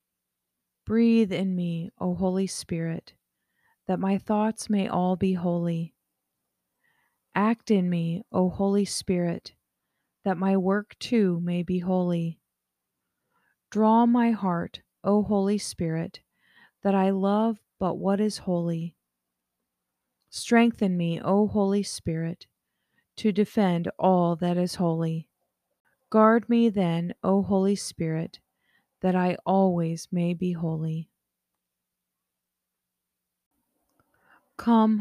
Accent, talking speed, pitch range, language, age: American, 110 wpm, 170-205 Hz, English, 40-59